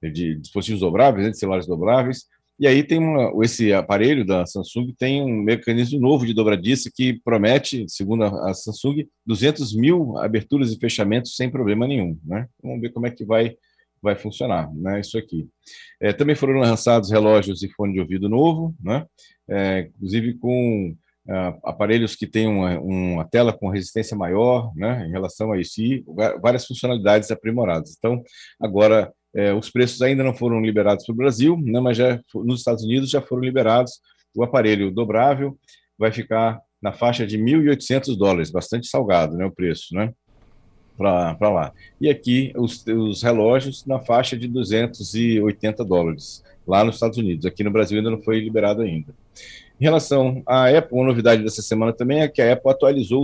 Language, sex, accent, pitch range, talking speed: Portuguese, male, Brazilian, 105-125 Hz, 165 wpm